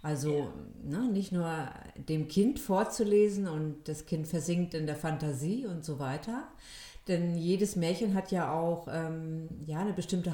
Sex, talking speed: female, 145 wpm